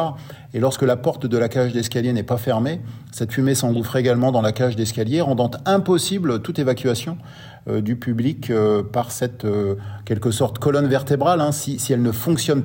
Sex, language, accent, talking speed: male, French, French, 190 wpm